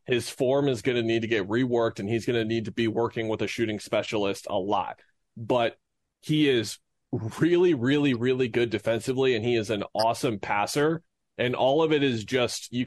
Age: 30-49